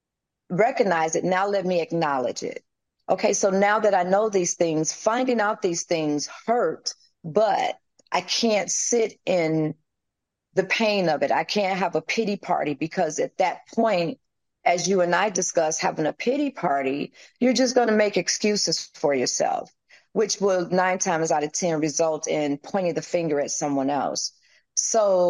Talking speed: 170 wpm